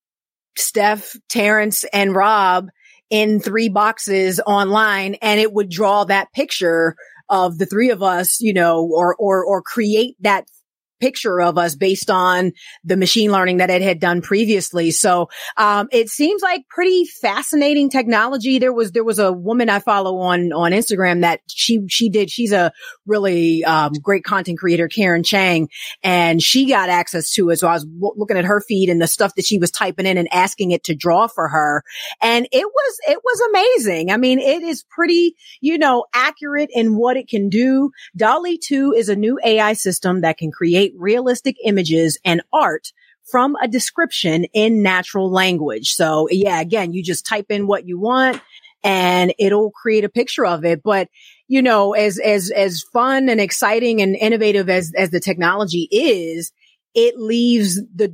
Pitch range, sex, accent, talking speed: 180-230 Hz, female, American, 180 wpm